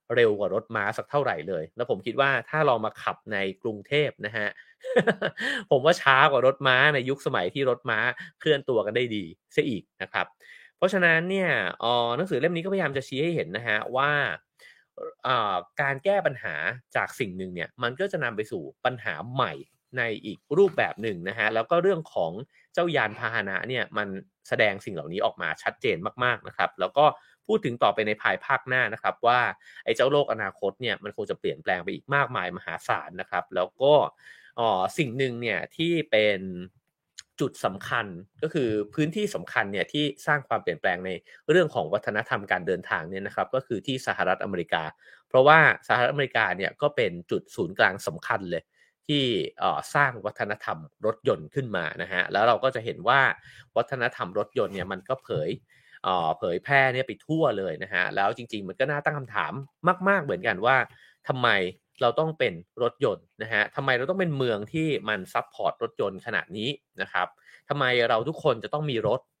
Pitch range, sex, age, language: 105-160 Hz, male, 30-49, English